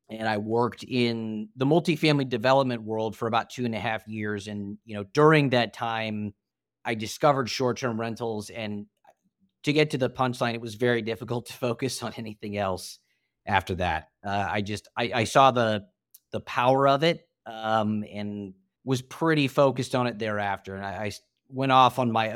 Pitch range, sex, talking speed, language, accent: 105-125 Hz, male, 180 wpm, English, American